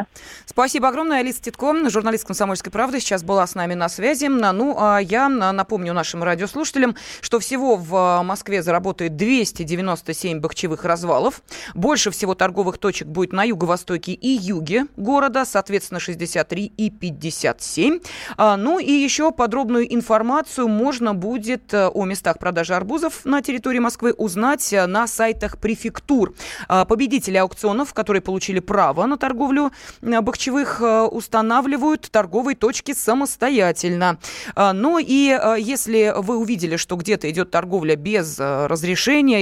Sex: female